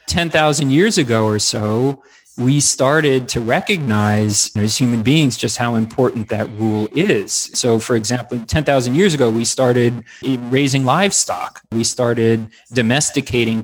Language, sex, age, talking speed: English, male, 30-49, 145 wpm